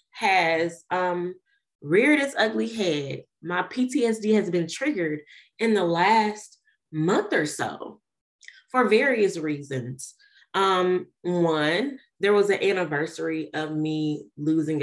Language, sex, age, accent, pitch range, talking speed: English, female, 20-39, American, 155-215 Hz, 115 wpm